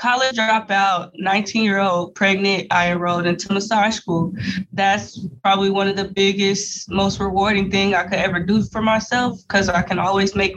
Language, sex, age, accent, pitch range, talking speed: English, female, 20-39, American, 195-245 Hz, 165 wpm